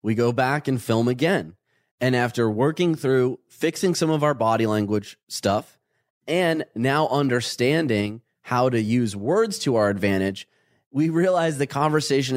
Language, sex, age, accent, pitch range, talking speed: English, male, 30-49, American, 110-155 Hz, 150 wpm